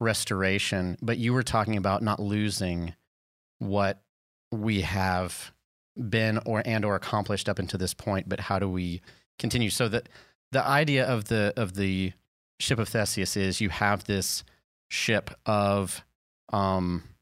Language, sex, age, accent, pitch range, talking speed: English, male, 30-49, American, 95-115 Hz, 150 wpm